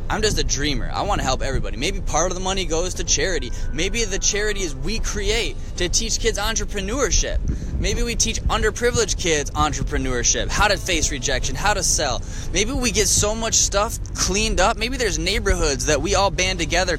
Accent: American